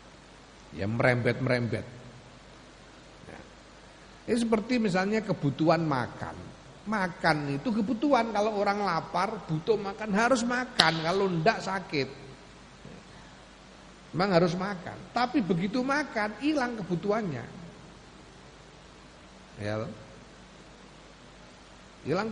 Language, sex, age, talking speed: Indonesian, male, 50-69, 80 wpm